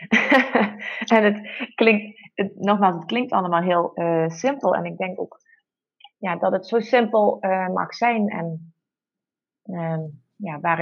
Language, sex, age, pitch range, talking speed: Dutch, female, 30-49, 180-220 Hz, 135 wpm